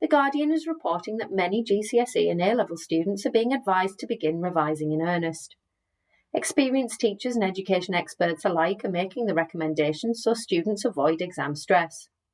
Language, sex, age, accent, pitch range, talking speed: English, female, 30-49, British, 160-225 Hz, 160 wpm